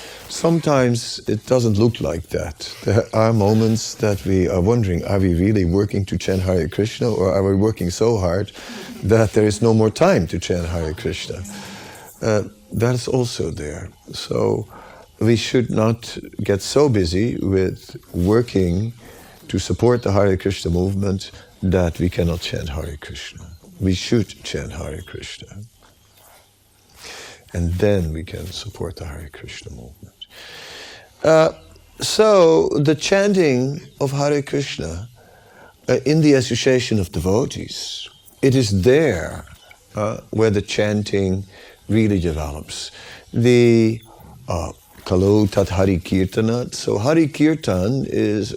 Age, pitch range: 50-69, 95-120 Hz